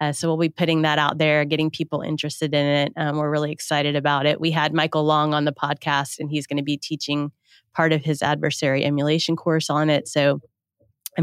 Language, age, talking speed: English, 30-49, 225 wpm